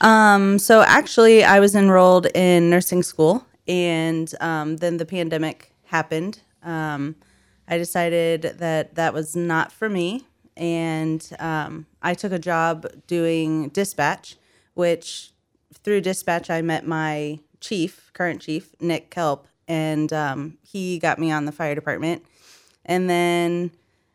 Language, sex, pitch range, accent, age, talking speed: English, female, 155-175 Hz, American, 20-39, 135 wpm